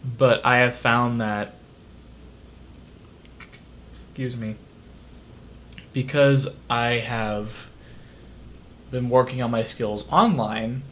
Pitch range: 105-130 Hz